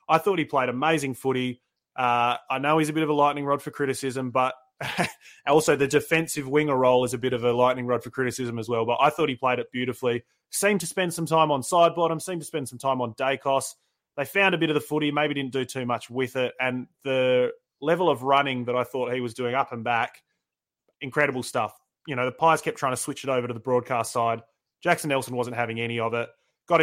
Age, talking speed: 20-39, 245 wpm